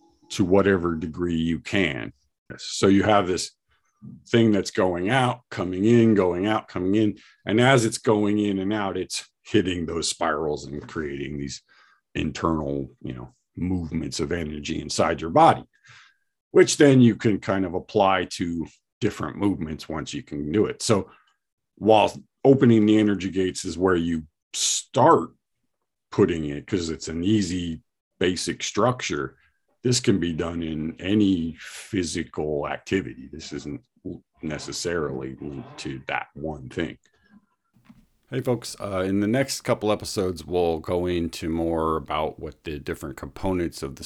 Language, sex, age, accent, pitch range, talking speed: English, male, 50-69, American, 80-100 Hz, 150 wpm